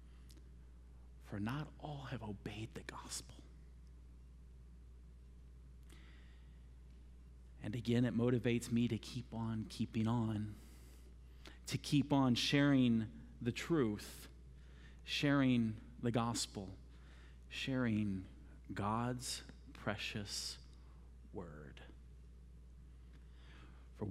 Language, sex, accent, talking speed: English, male, American, 75 wpm